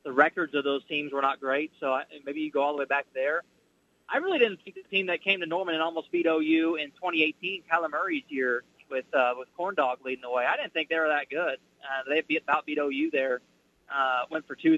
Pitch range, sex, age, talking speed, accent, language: 145-200 Hz, male, 30-49, 250 wpm, American, English